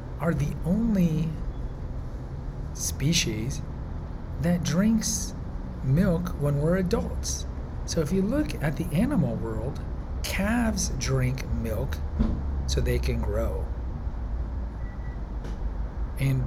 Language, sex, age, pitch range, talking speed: English, male, 40-59, 105-160 Hz, 95 wpm